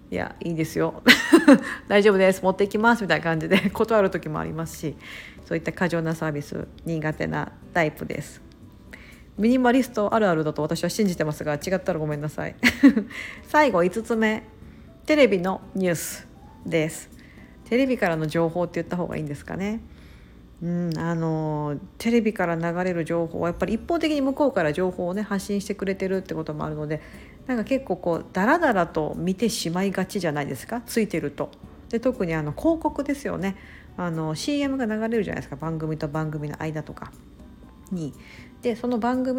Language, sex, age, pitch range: Japanese, female, 50-69, 160-220 Hz